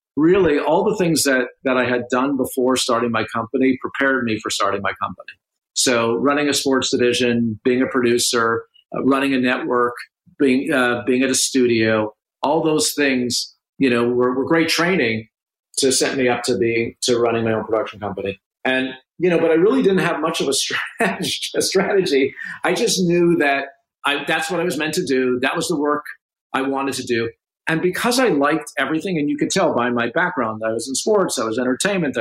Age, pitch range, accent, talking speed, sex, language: 50-69, 130-165 Hz, American, 205 wpm, male, English